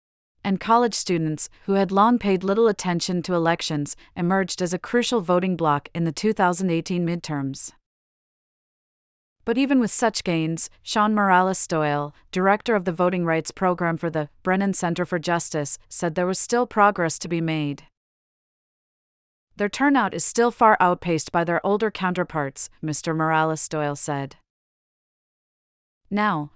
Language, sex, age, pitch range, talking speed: English, female, 40-59, 160-200 Hz, 140 wpm